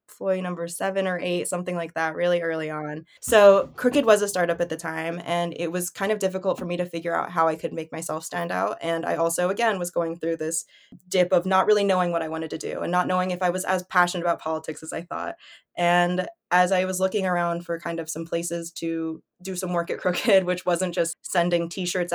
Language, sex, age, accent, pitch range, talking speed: English, female, 20-39, American, 160-180 Hz, 245 wpm